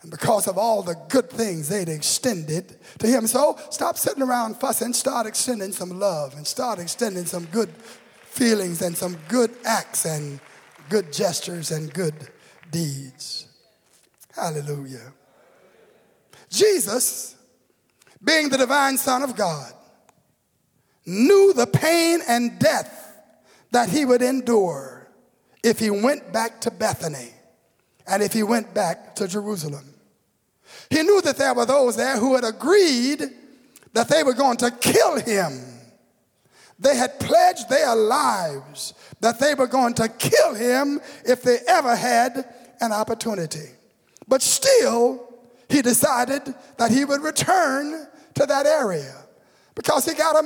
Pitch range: 190-270 Hz